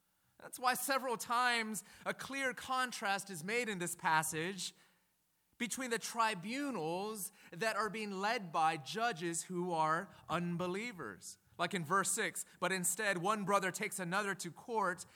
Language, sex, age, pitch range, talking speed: English, male, 30-49, 175-230 Hz, 145 wpm